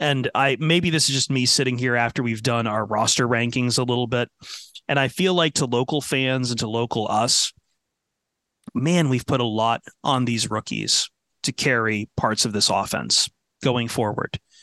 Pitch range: 115-140 Hz